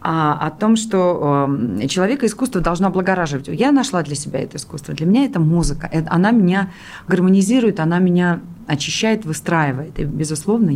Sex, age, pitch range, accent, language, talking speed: female, 30-49, 155-200 Hz, native, Russian, 145 wpm